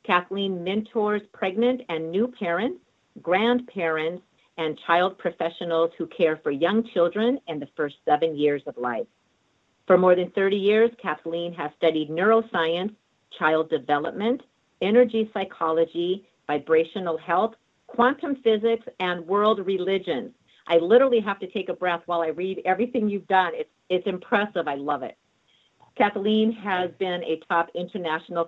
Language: English